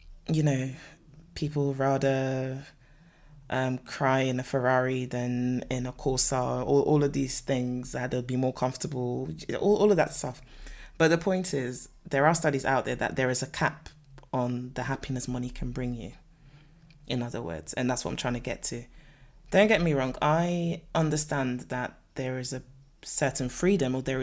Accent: British